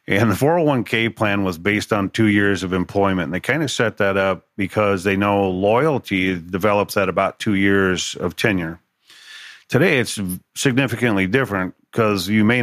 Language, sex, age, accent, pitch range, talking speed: English, male, 40-59, American, 95-115 Hz, 170 wpm